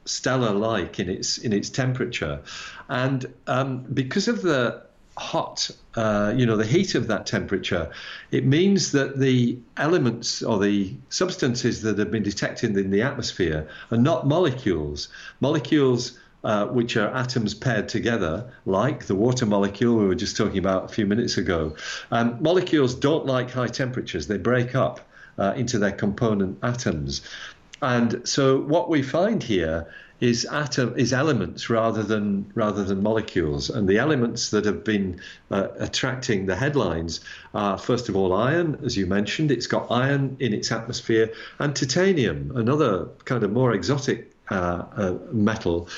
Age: 50-69